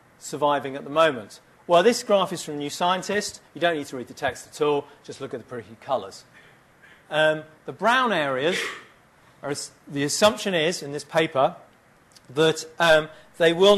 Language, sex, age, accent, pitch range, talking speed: English, male, 40-59, British, 145-185 Hz, 185 wpm